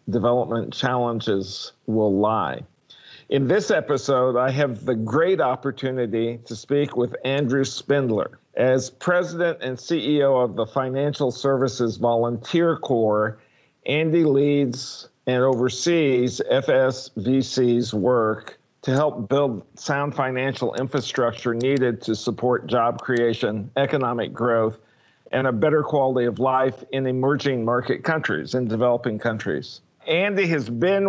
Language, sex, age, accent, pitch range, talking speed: English, male, 50-69, American, 120-145 Hz, 120 wpm